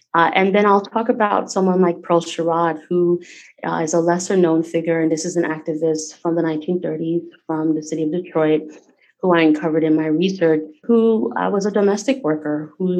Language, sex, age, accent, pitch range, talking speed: English, female, 30-49, American, 160-180 Hz, 200 wpm